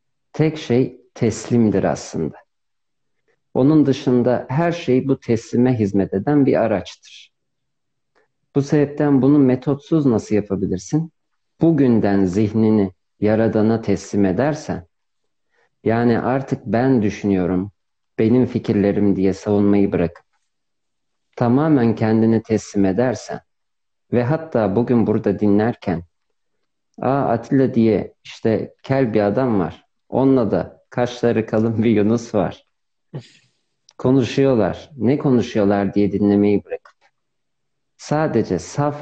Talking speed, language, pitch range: 100 wpm, Turkish, 100-130 Hz